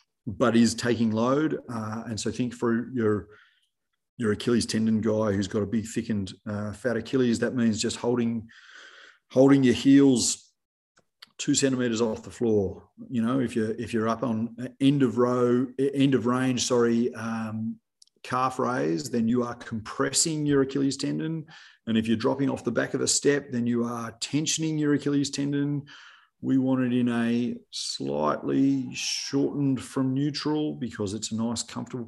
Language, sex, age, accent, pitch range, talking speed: English, male, 30-49, Australian, 110-130 Hz, 170 wpm